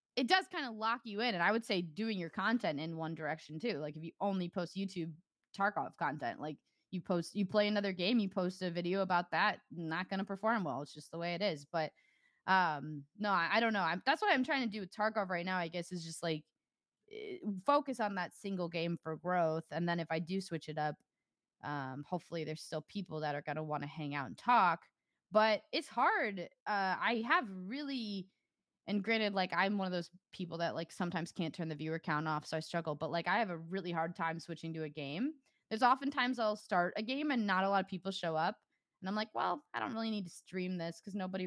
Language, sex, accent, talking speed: English, female, American, 245 wpm